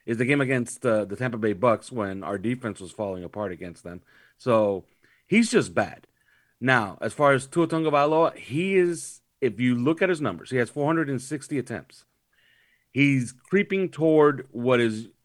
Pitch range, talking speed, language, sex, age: 115-145 Hz, 175 wpm, English, male, 40-59